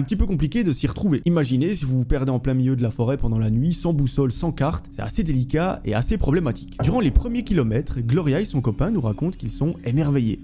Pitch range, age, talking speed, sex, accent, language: 115-155 Hz, 20-39, 255 wpm, male, French, French